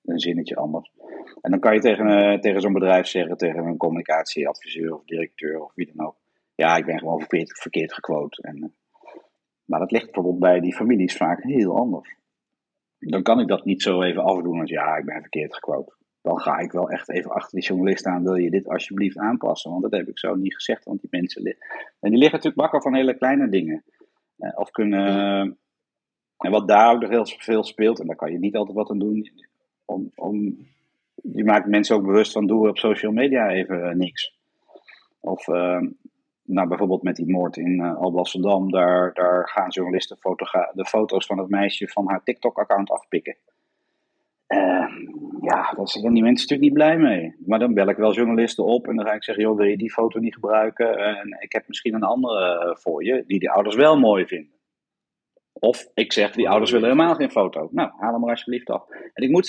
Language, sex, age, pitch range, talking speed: Dutch, male, 50-69, 90-115 Hz, 215 wpm